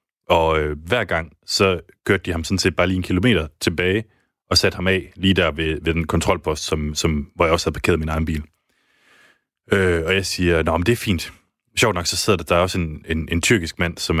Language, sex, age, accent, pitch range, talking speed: Danish, male, 30-49, native, 80-95 Hz, 245 wpm